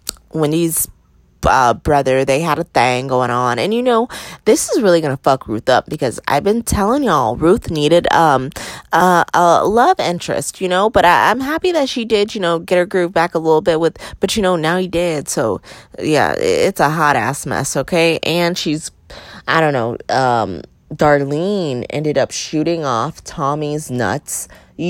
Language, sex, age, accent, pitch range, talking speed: English, female, 20-39, American, 145-205 Hz, 185 wpm